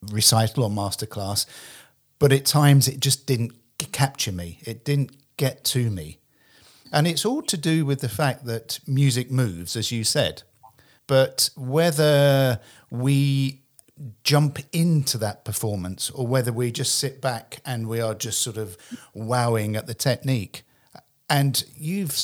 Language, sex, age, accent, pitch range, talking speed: English, male, 50-69, British, 110-140 Hz, 150 wpm